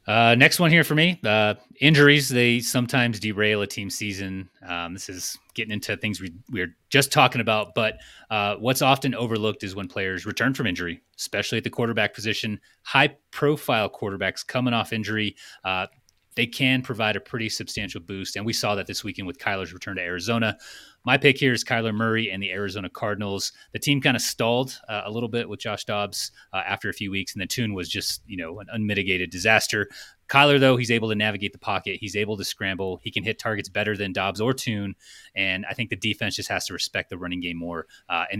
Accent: American